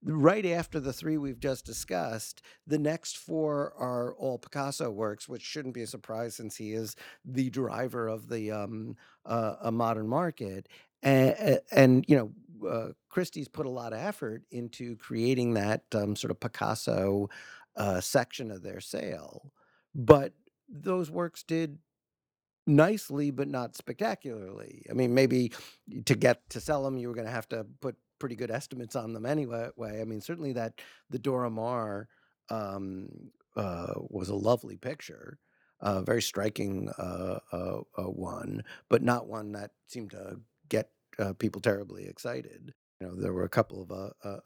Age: 50-69